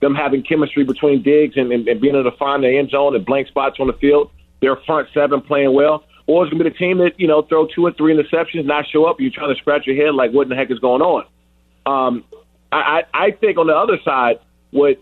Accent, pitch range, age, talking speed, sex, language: American, 135-170 Hz, 40-59, 270 wpm, male, English